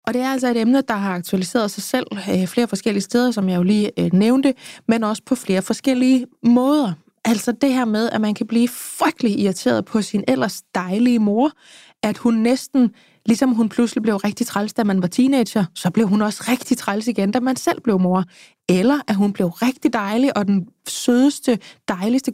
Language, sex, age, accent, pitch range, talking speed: Danish, female, 20-39, native, 200-245 Hz, 200 wpm